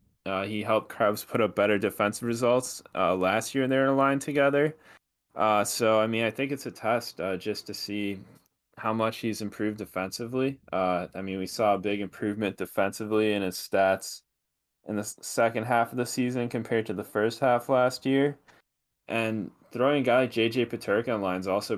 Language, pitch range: English, 95-115 Hz